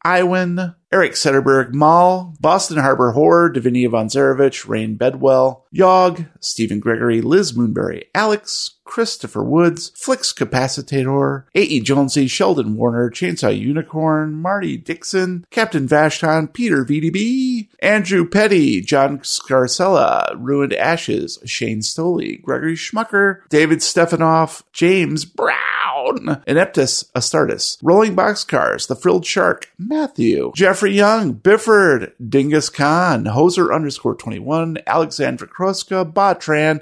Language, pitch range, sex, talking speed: English, 135-185 Hz, male, 110 wpm